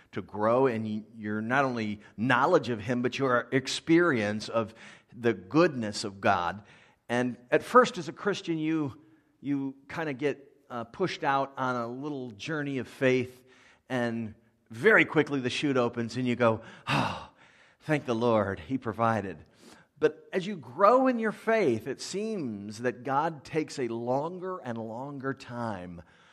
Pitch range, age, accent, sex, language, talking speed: 115-150 Hz, 50-69, American, male, English, 155 wpm